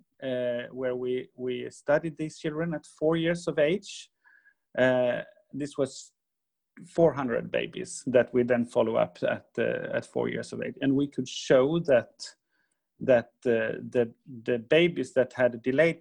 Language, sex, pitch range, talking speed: English, male, 125-165 Hz, 160 wpm